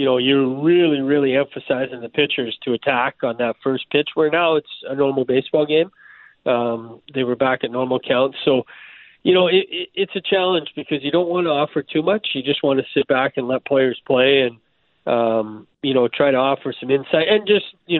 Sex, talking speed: male, 220 wpm